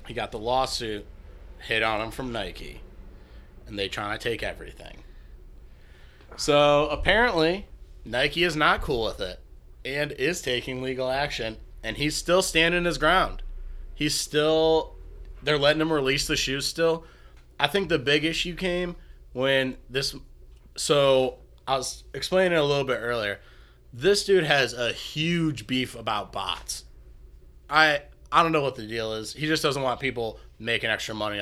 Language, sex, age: English, male, 20-39